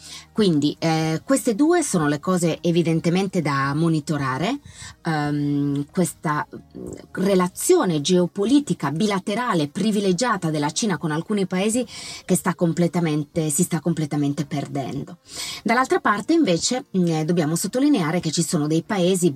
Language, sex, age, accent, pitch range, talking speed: Italian, female, 30-49, native, 145-180 Hz, 120 wpm